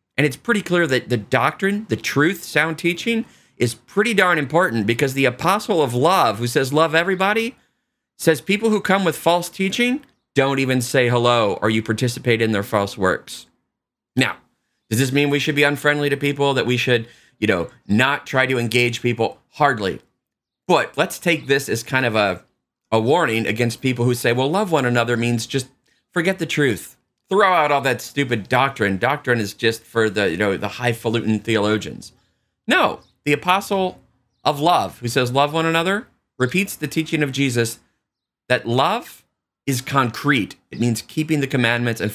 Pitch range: 115-150 Hz